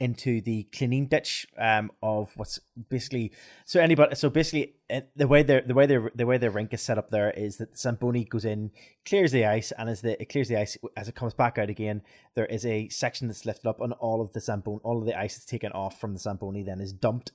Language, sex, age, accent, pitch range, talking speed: English, male, 20-39, British, 110-130 Hz, 255 wpm